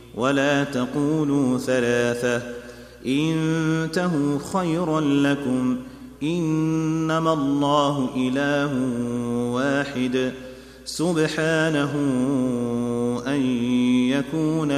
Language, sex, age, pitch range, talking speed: Arabic, male, 30-49, 120-145 Hz, 55 wpm